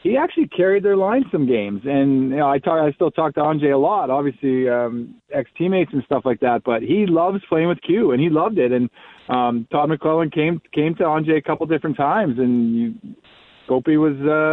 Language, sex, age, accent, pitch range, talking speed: English, male, 40-59, American, 130-160 Hz, 225 wpm